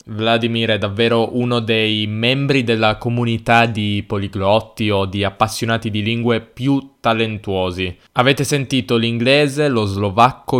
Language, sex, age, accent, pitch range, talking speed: Italian, male, 10-29, native, 105-120 Hz, 125 wpm